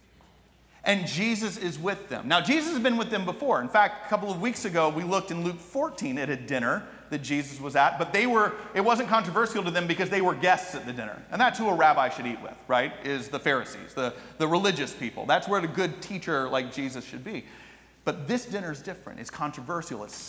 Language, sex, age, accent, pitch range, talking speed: English, male, 40-59, American, 155-215 Hz, 235 wpm